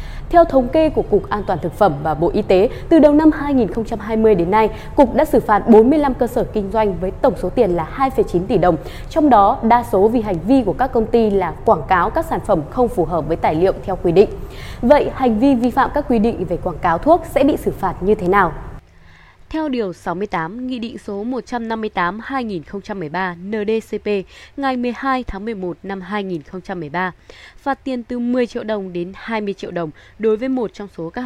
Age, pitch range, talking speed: 20-39, 185-250 Hz, 210 wpm